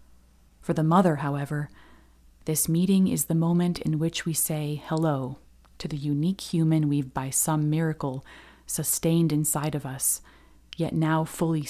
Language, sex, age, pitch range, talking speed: English, female, 30-49, 130-165 Hz, 150 wpm